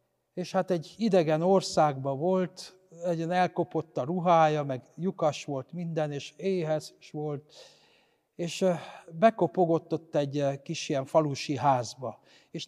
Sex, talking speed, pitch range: male, 120 wpm, 145-185 Hz